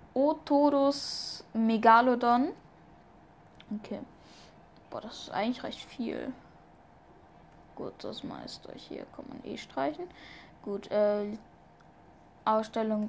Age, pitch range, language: 10-29, 210-245 Hz, German